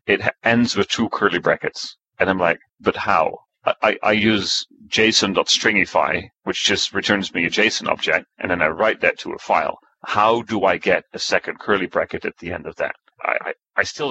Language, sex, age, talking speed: English, male, 30-49, 200 wpm